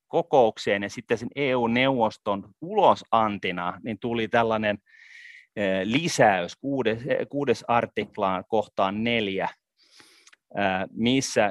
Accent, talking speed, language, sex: native, 85 wpm, Finnish, male